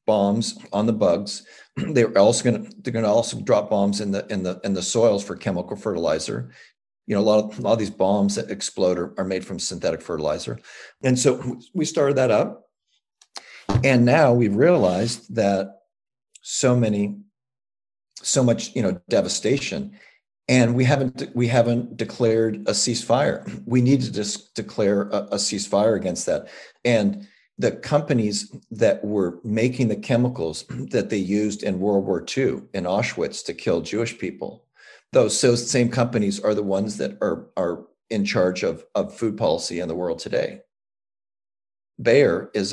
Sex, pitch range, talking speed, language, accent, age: male, 100-125 Hz, 165 wpm, English, American, 40-59